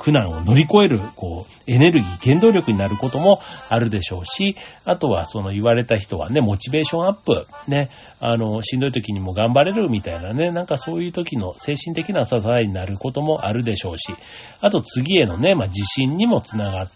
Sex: male